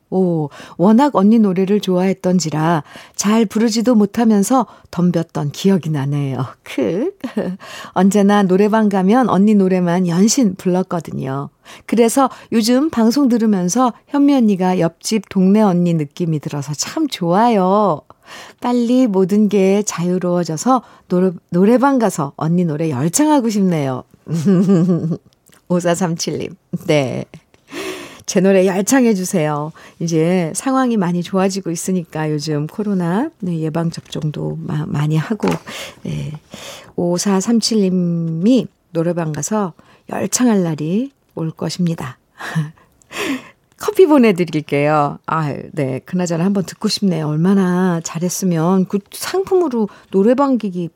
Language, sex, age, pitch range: Korean, female, 50-69, 165-215 Hz